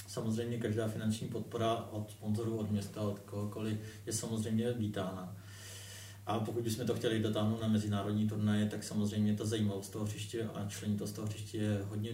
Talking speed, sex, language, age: 175 wpm, male, Czech, 30-49